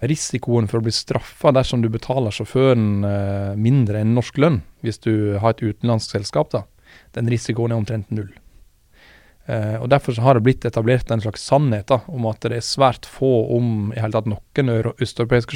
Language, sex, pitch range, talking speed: English, male, 110-130 Hz, 180 wpm